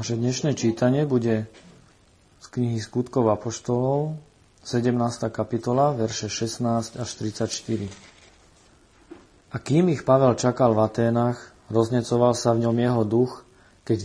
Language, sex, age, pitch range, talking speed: Slovak, male, 40-59, 110-125 Hz, 130 wpm